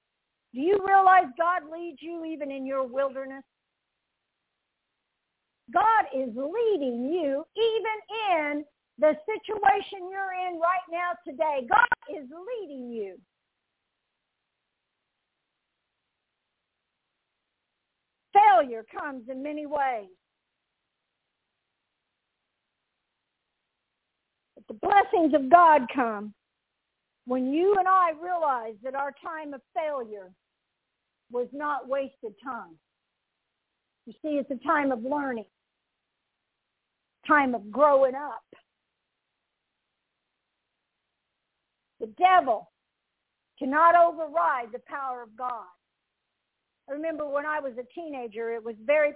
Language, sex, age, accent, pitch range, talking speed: English, female, 50-69, American, 265-370 Hz, 100 wpm